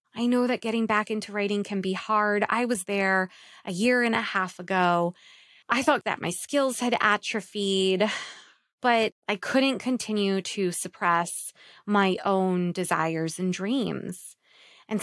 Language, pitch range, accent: English, 195-235 Hz, American